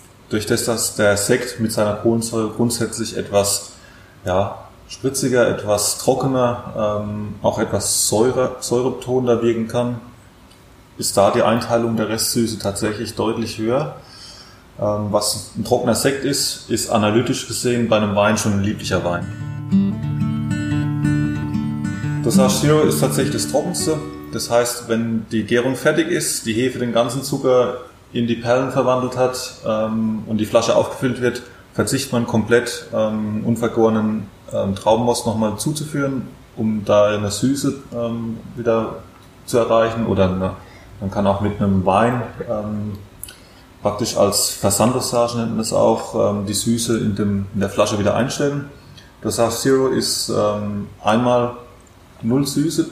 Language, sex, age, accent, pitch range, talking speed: German, male, 20-39, German, 105-120 Hz, 135 wpm